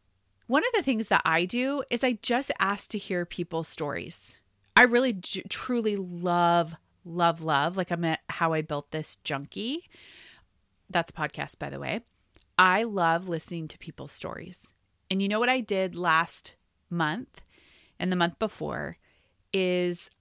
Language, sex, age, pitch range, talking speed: English, female, 30-49, 165-210 Hz, 160 wpm